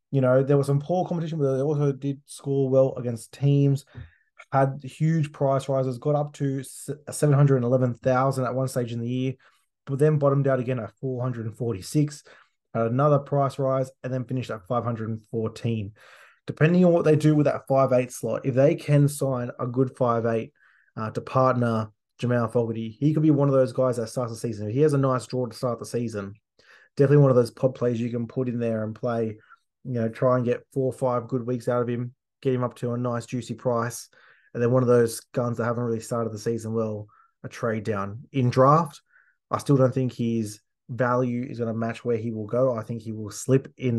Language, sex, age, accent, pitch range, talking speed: English, male, 20-39, Australian, 115-135 Hz, 215 wpm